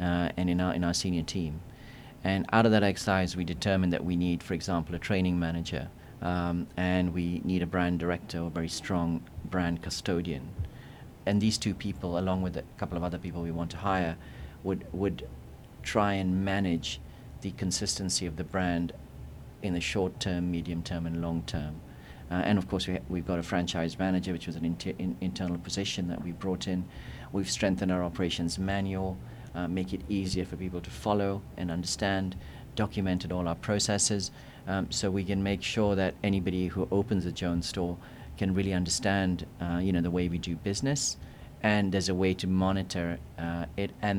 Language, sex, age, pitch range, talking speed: English, male, 40-59, 85-100 Hz, 195 wpm